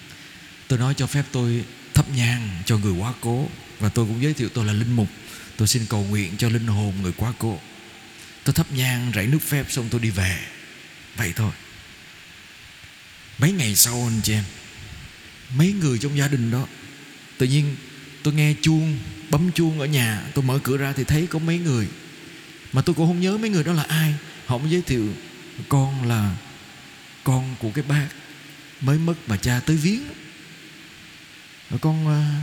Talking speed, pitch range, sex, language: 180 wpm, 110-145 Hz, male, Vietnamese